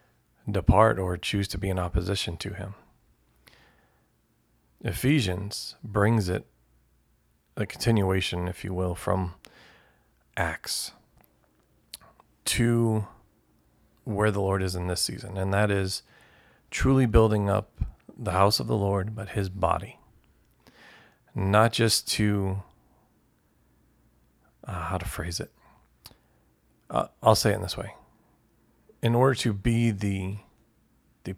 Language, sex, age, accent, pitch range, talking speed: English, male, 40-59, American, 90-110 Hz, 120 wpm